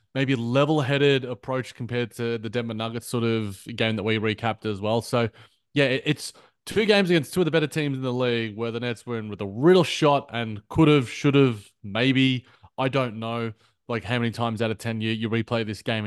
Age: 20-39